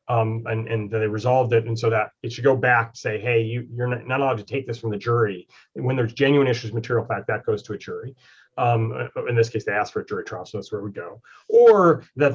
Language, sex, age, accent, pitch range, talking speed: English, male, 30-49, American, 115-145 Hz, 260 wpm